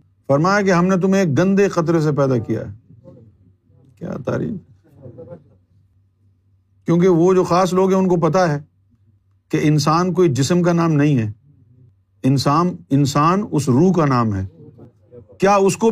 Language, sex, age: Urdu, male, 50-69